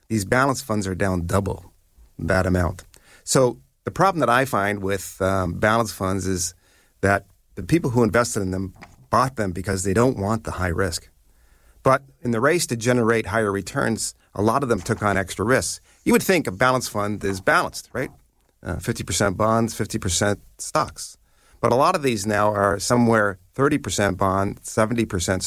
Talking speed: 180 wpm